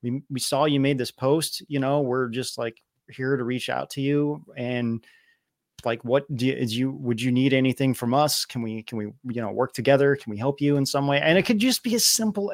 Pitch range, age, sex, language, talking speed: 120-155 Hz, 30-49, male, English, 255 wpm